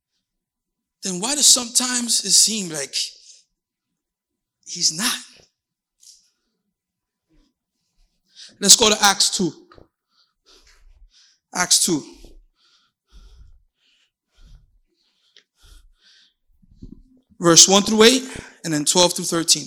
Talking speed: 75 wpm